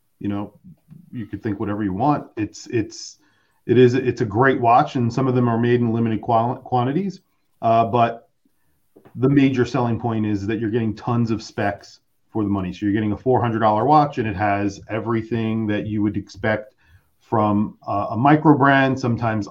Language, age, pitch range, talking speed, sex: English, 40-59, 105-125 Hz, 195 wpm, male